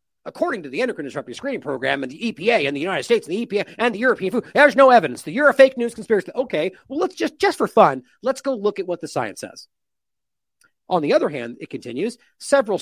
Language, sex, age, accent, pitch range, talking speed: English, male, 40-59, American, 160-255 Hz, 245 wpm